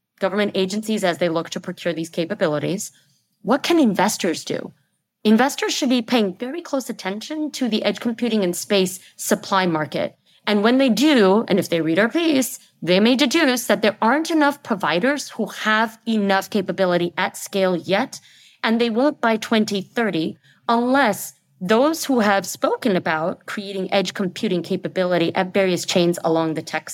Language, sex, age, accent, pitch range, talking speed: English, female, 30-49, American, 170-225 Hz, 165 wpm